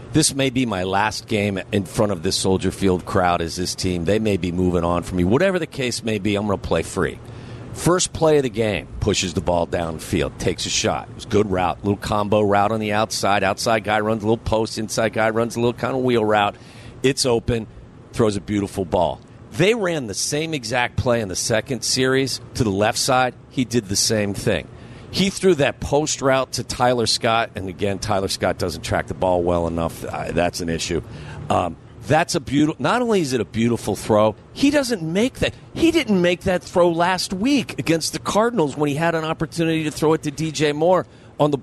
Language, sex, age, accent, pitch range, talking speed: English, male, 50-69, American, 105-140 Hz, 225 wpm